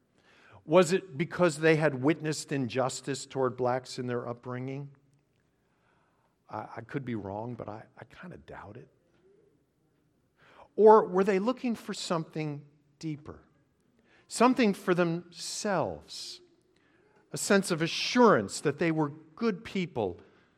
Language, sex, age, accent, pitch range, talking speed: English, male, 50-69, American, 125-165 Hz, 120 wpm